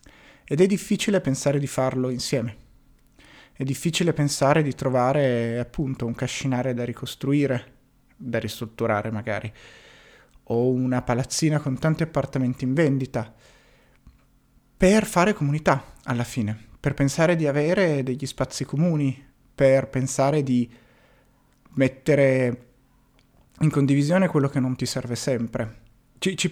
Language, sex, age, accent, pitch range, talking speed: Italian, male, 30-49, native, 115-140 Hz, 120 wpm